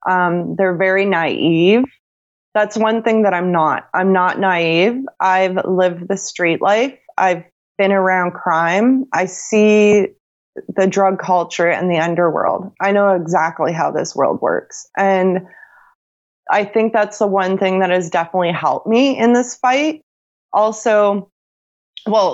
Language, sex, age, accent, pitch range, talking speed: English, female, 20-39, American, 175-210 Hz, 145 wpm